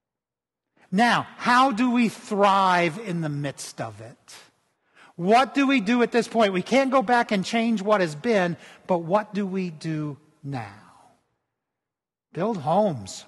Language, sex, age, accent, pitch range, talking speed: English, male, 50-69, American, 150-210 Hz, 155 wpm